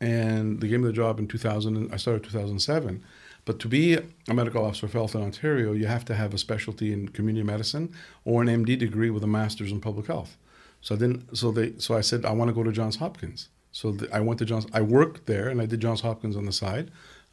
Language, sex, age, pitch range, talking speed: English, male, 50-69, 105-120 Hz, 240 wpm